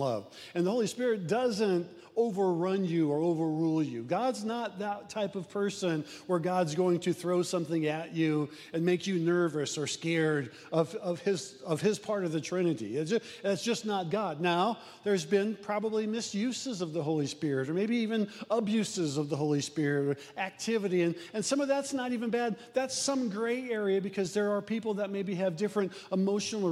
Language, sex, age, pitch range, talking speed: English, male, 50-69, 175-210 Hz, 190 wpm